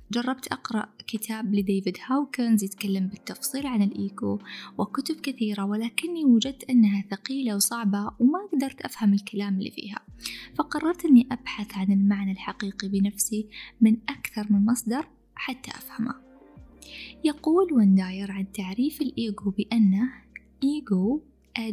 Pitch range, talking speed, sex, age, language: 200-260 Hz, 115 wpm, female, 10-29, Arabic